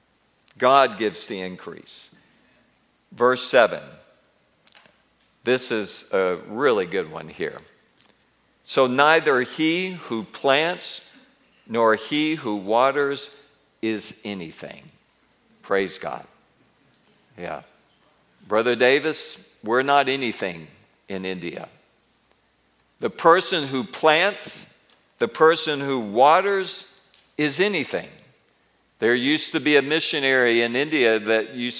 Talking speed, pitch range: 100 wpm, 125-190 Hz